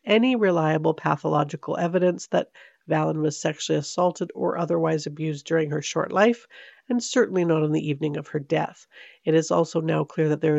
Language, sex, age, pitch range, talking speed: English, female, 50-69, 155-185 Hz, 180 wpm